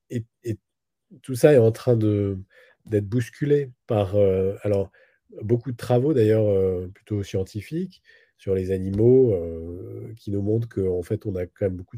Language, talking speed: French, 175 wpm